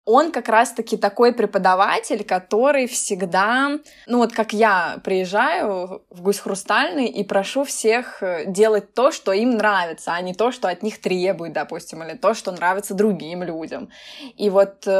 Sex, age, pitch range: female, 20-39, 200-245 Hz